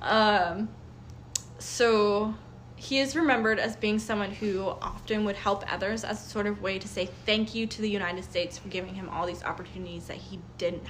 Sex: female